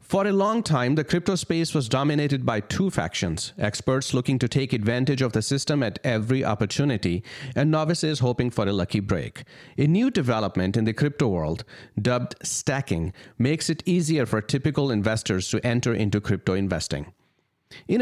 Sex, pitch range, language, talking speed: male, 110-145 Hz, English, 170 wpm